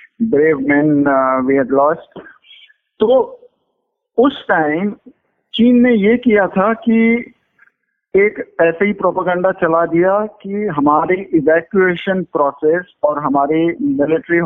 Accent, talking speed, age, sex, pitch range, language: native, 110 wpm, 50-69, male, 160-225 Hz, Hindi